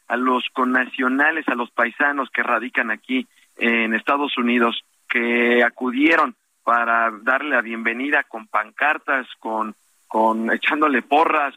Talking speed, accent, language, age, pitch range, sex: 125 wpm, Mexican, Spanish, 50-69, 115-150 Hz, male